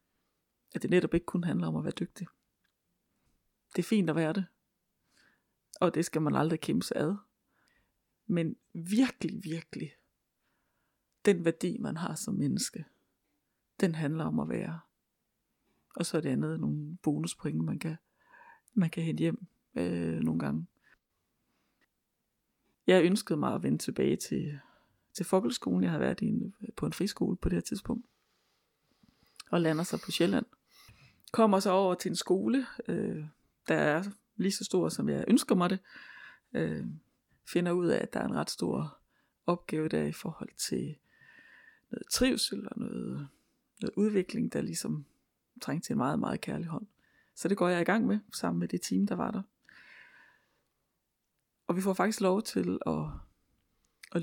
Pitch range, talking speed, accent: 155-205 Hz, 165 wpm, native